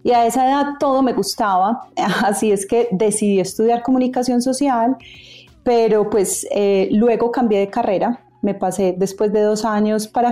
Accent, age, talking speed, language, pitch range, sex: Colombian, 30-49, 165 wpm, Spanish, 200-235 Hz, female